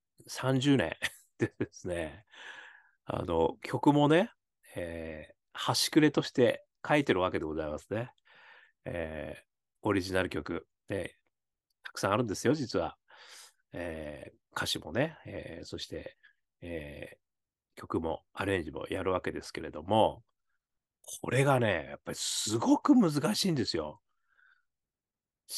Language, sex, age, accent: Japanese, male, 40-59, native